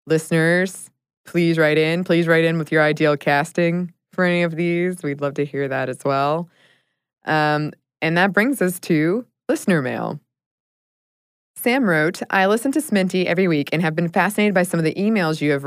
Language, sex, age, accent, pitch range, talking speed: English, female, 20-39, American, 145-180 Hz, 190 wpm